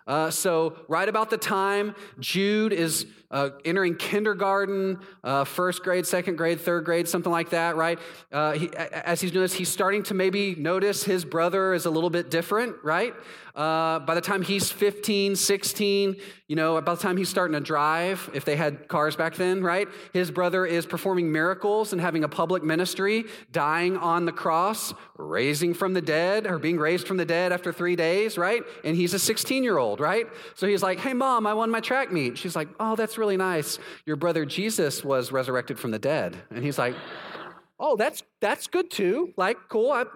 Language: English